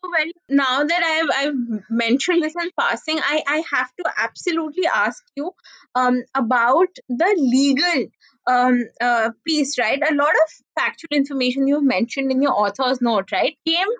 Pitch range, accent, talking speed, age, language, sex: 250-325 Hz, Indian, 160 wpm, 20-39, English, female